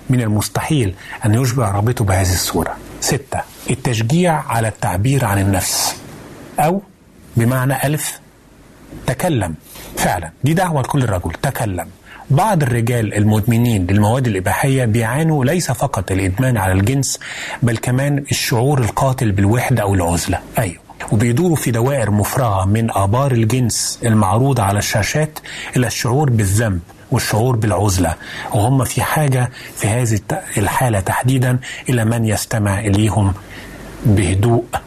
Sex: male